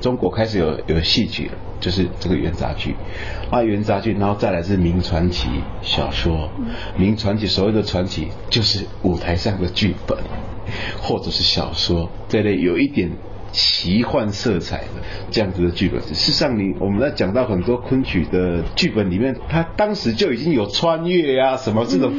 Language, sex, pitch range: Chinese, male, 90-110 Hz